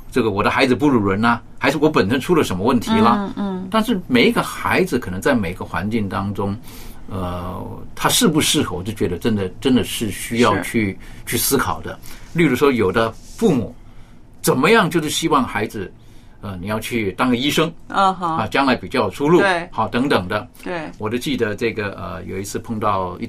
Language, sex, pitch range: Chinese, male, 105-170 Hz